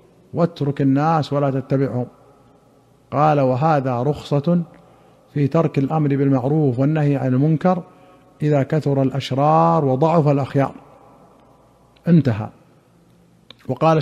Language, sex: Arabic, male